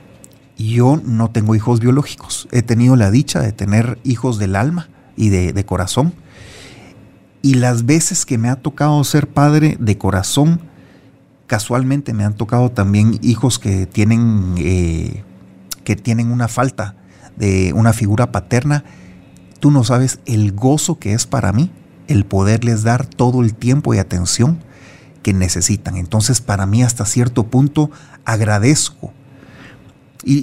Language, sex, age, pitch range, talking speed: Spanish, male, 40-59, 105-135 Hz, 140 wpm